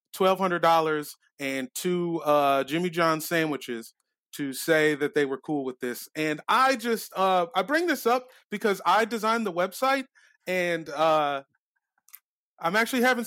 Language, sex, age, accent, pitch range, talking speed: English, male, 30-49, American, 140-180 Hz, 145 wpm